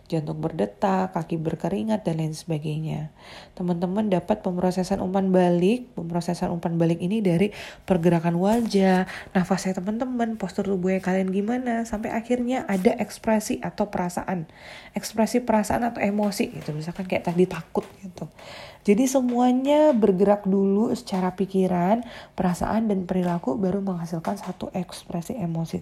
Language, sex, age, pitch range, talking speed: Indonesian, female, 20-39, 175-215 Hz, 130 wpm